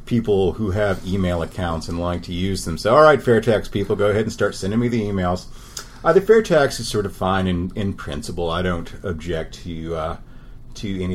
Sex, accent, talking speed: male, American, 225 wpm